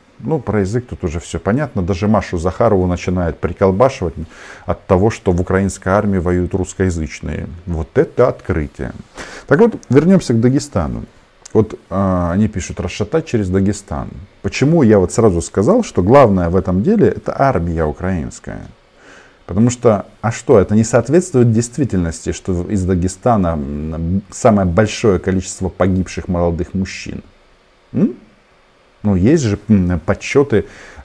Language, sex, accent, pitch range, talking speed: Russian, male, native, 90-115 Hz, 135 wpm